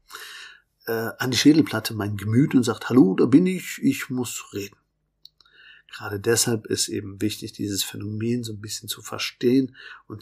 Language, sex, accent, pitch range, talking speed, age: German, male, German, 105-120 Hz, 160 wpm, 50-69